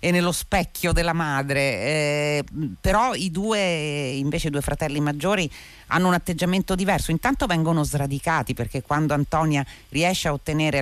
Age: 40-59